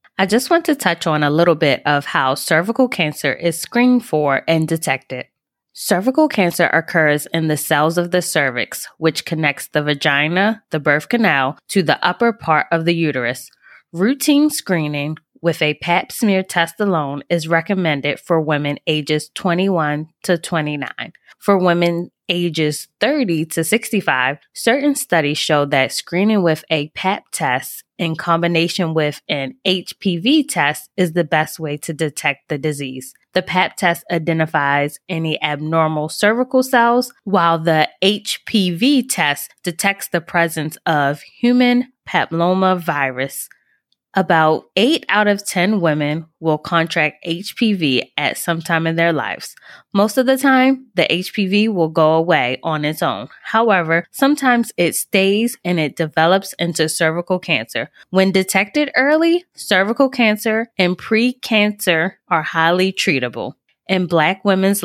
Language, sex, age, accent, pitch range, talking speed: English, female, 20-39, American, 155-200 Hz, 145 wpm